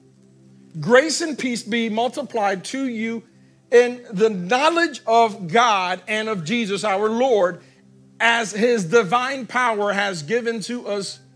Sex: male